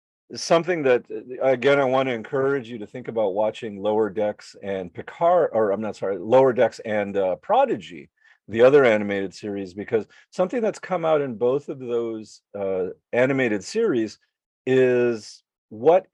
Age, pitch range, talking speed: 40-59, 105-135 Hz, 160 wpm